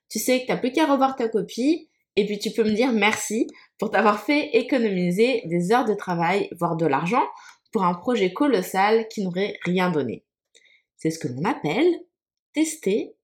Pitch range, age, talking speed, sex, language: 175-265 Hz, 20-39, 185 wpm, female, French